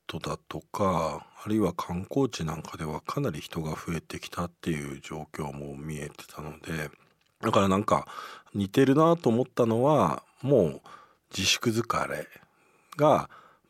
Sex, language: male, Japanese